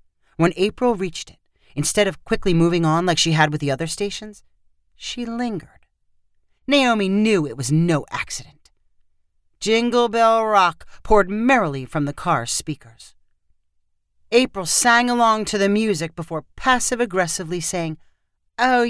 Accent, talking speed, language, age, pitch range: American, 140 wpm, English, 40-59, 150-230 Hz